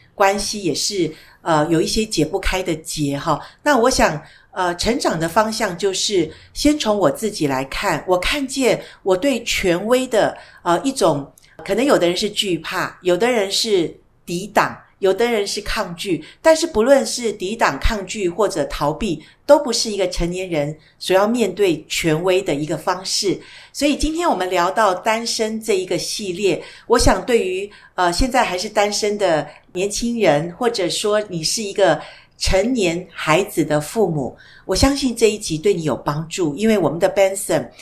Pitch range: 175-230 Hz